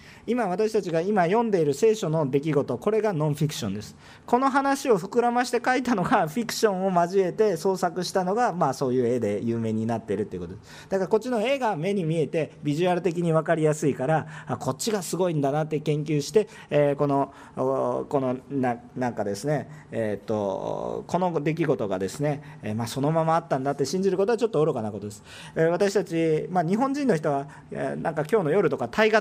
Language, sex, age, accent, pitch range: Japanese, male, 40-59, native, 145-215 Hz